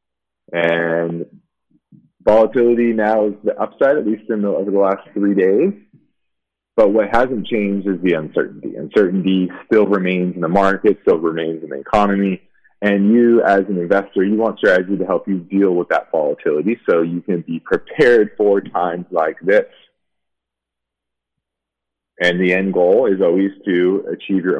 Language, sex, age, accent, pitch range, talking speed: English, male, 30-49, American, 85-100 Hz, 160 wpm